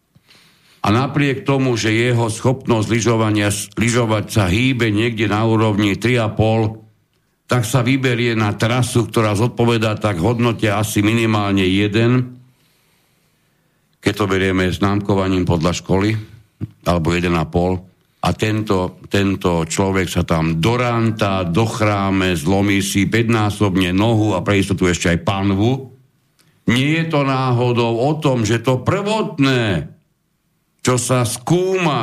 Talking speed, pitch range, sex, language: 120 wpm, 100-130 Hz, male, Slovak